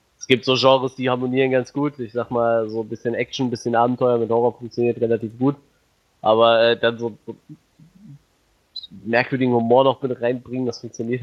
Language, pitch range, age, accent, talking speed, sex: German, 115-130 Hz, 20-39, German, 175 wpm, male